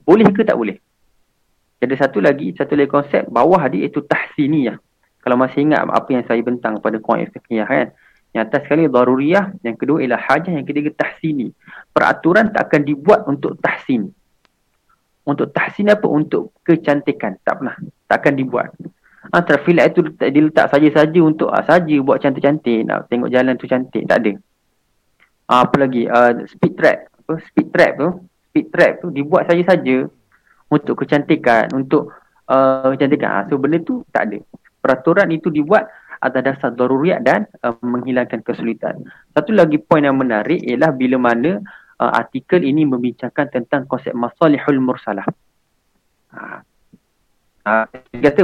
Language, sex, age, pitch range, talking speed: Malay, male, 30-49, 125-160 Hz, 155 wpm